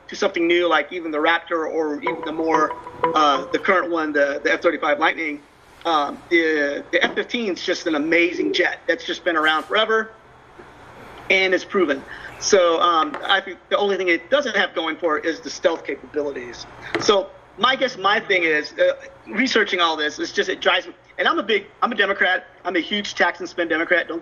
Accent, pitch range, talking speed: American, 170-235 Hz, 205 wpm